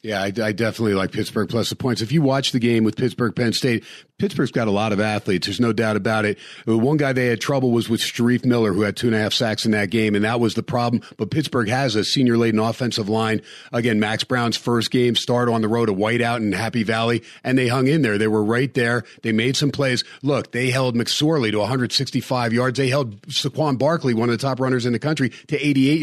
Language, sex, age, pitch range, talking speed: English, male, 40-59, 115-135 Hz, 250 wpm